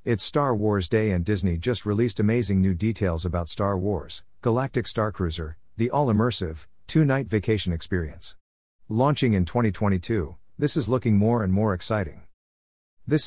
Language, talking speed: English, 150 wpm